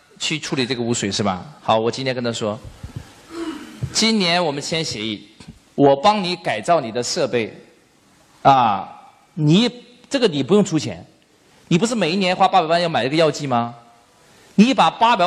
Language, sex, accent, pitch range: Chinese, male, native, 140-230 Hz